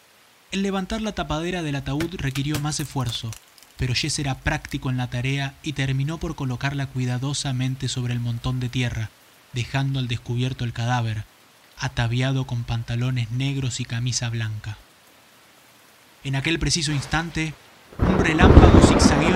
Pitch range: 125-155 Hz